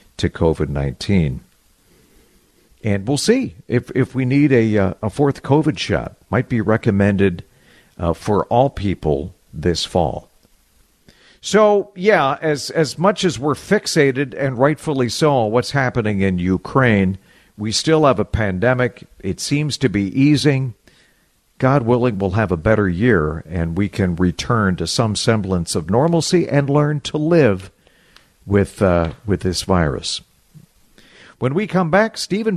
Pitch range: 105-175 Hz